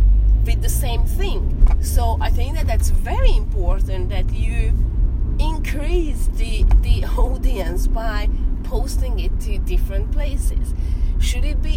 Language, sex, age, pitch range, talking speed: English, female, 30-49, 75-90 Hz, 135 wpm